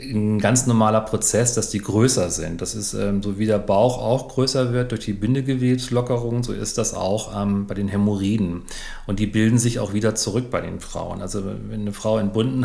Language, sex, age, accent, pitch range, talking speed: German, male, 40-59, German, 105-125 Hz, 210 wpm